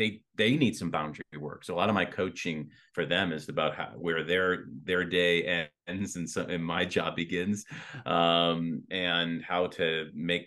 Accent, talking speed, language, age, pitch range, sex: American, 185 wpm, English, 30-49, 90-115 Hz, male